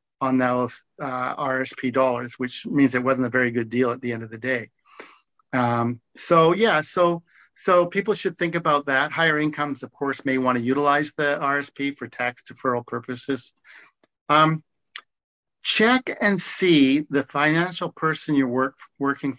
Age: 50-69